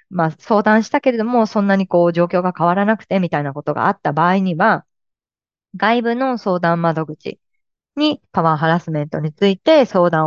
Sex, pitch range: female, 165-235 Hz